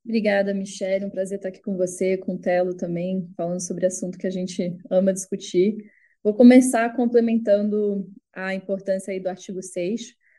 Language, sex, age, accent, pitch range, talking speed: Portuguese, female, 10-29, Brazilian, 190-225 Hz, 170 wpm